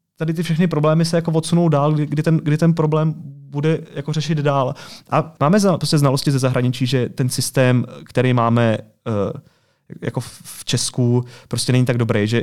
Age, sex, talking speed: 30-49, male, 155 wpm